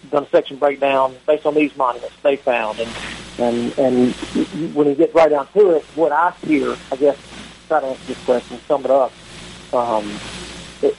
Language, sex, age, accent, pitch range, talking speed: English, male, 40-59, American, 125-145 Hz, 185 wpm